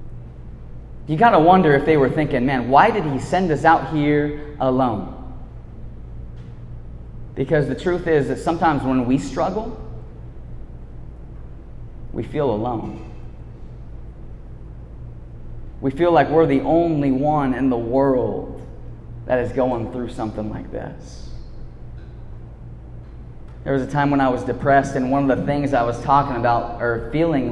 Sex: male